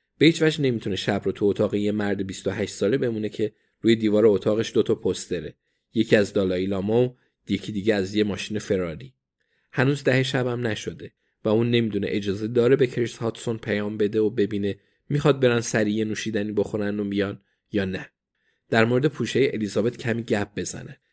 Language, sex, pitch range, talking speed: Persian, male, 105-125 Hz, 175 wpm